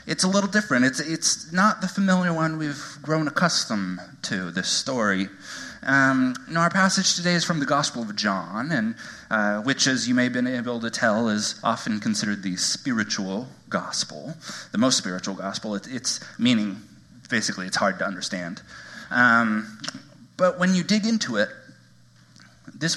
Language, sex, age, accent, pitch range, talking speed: English, male, 30-49, American, 110-165 Hz, 165 wpm